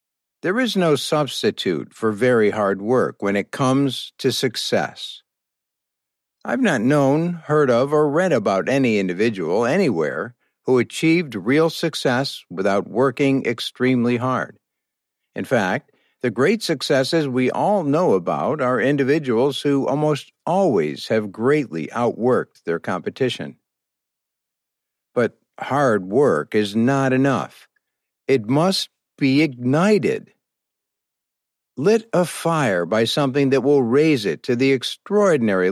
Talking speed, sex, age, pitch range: 125 wpm, male, 50-69, 125-150 Hz